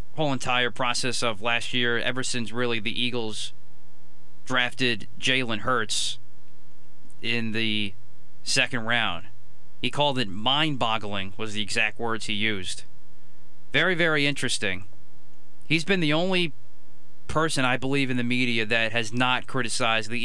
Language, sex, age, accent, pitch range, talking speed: English, male, 30-49, American, 105-140 Hz, 135 wpm